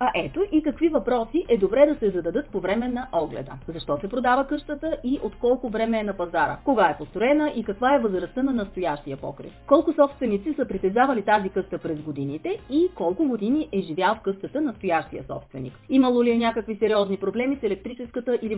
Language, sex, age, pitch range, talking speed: Bulgarian, female, 30-49, 185-255 Hz, 200 wpm